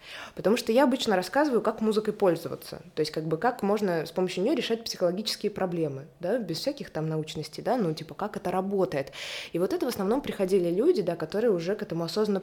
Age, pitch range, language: 20-39, 165-215 Hz, Russian